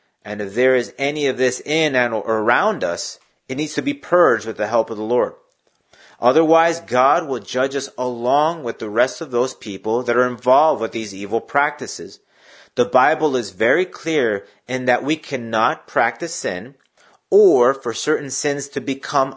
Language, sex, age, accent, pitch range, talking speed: English, male, 30-49, American, 120-155 Hz, 180 wpm